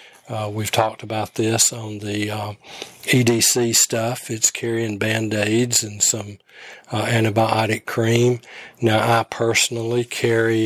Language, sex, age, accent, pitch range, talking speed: English, male, 40-59, American, 110-120 Hz, 125 wpm